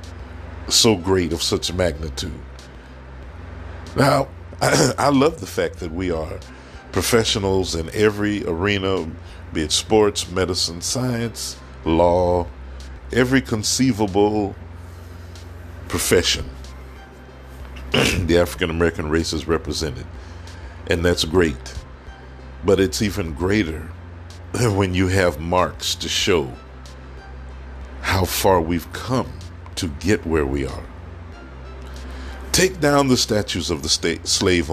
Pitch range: 75-100 Hz